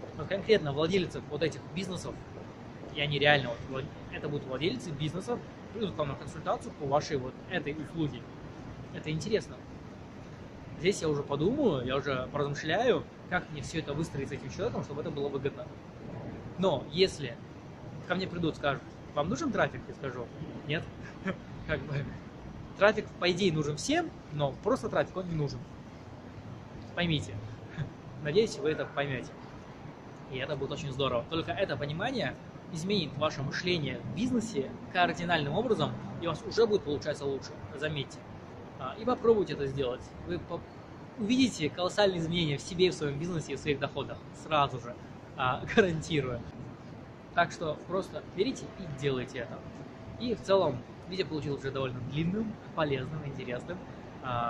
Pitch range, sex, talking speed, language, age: 135-175 Hz, male, 145 wpm, Russian, 20-39